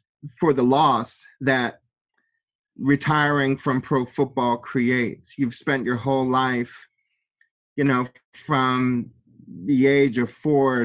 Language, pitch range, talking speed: English, 125-145 Hz, 115 wpm